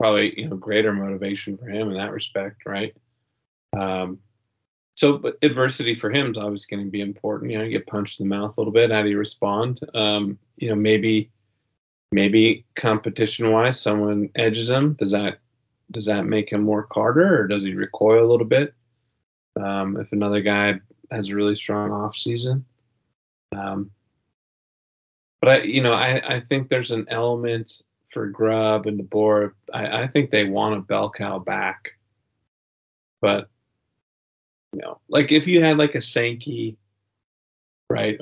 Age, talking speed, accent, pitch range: 30-49, 170 wpm, American, 105-120 Hz